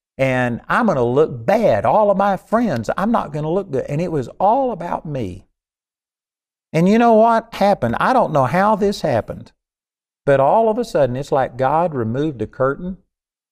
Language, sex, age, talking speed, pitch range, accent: English, male, 50-69, 185 wpm, 115-155 Hz, American